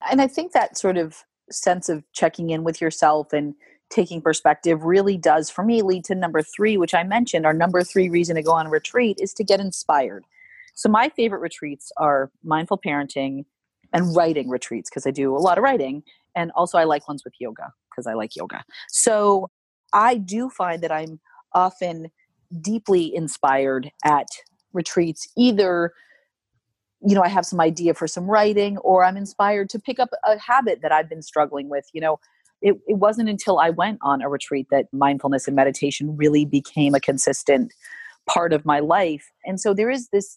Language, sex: English, female